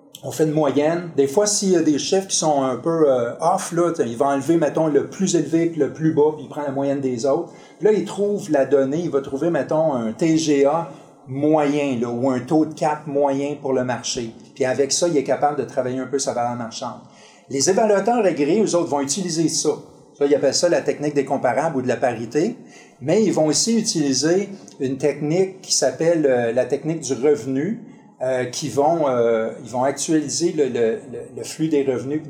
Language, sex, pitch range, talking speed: French, male, 130-160 Hz, 225 wpm